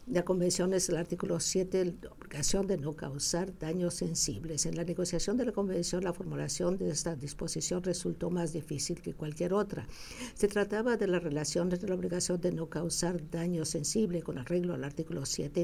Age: 60-79